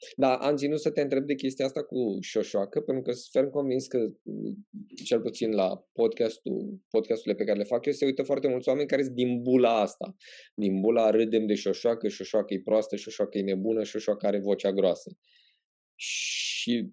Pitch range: 100-140 Hz